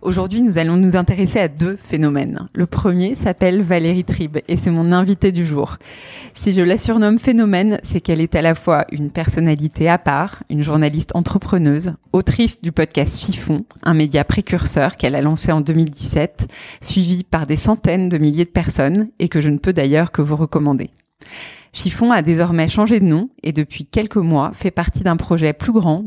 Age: 20-39